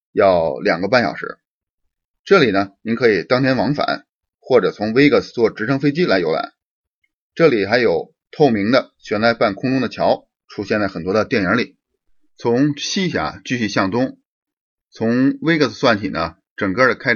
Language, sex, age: Chinese, male, 30-49